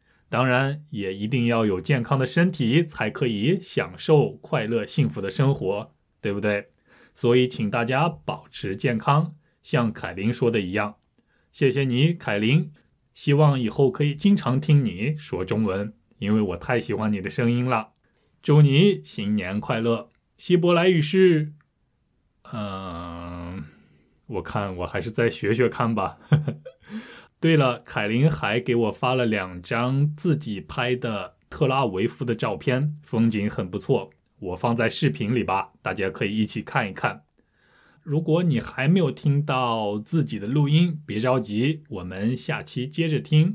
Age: 20-39